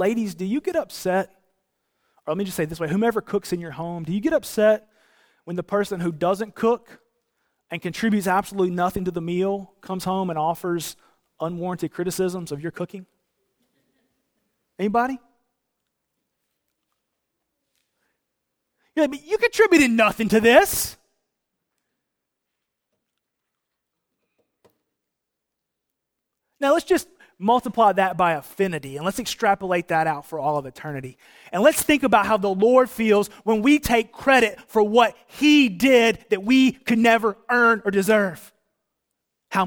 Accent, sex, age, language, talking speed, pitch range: American, male, 30-49, English, 140 wpm, 180-235 Hz